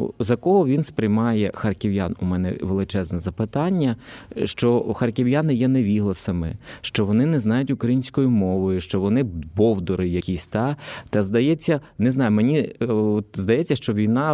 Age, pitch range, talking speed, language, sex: 20-39, 100-135 Hz, 140 wpm, Ukrainian, male